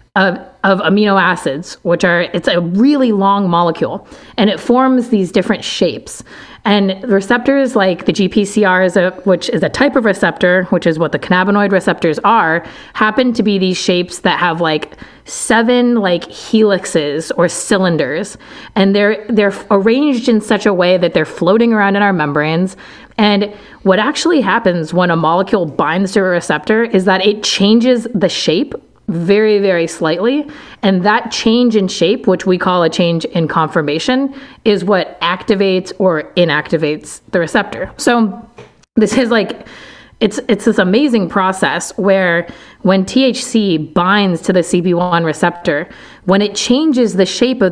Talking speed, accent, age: 160 wpm, American, 30-49